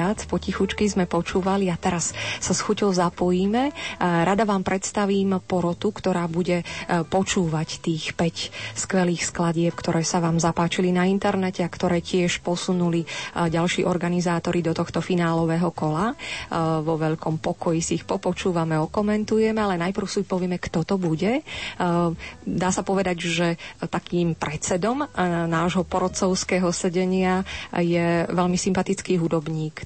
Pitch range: 170-190 Hz